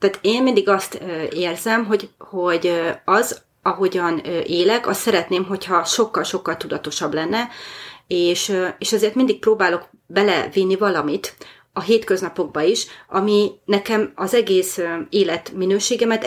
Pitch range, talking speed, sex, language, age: 175-210 Hz, 115 wpm, female, Hungarian, 30-49